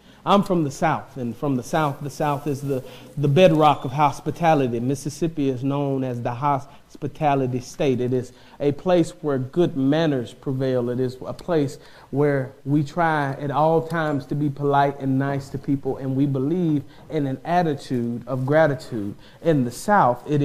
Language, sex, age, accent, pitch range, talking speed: English, male, 40-59, American, 140-180 Hz, 175 wpm